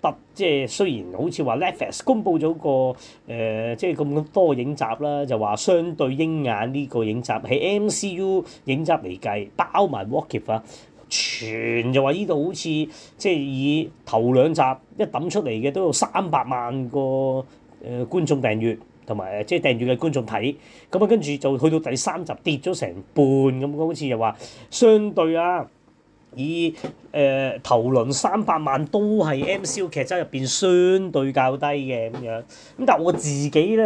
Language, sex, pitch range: Chinese, male, 130-165 Hz